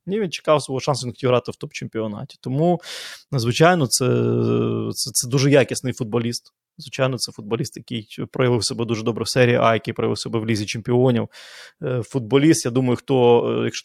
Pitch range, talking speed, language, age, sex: 115-140 Hz, 170 wpm, Ukrainian, 20-39, male